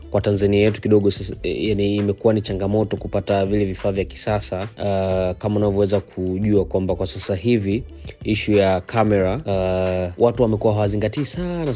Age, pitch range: 20-39, 95-110 Hz